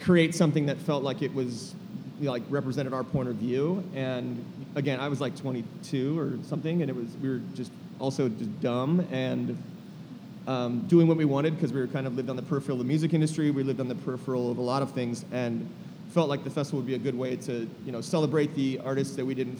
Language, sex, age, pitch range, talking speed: English, male, 30-49, 125-155 Hz, 245 wpm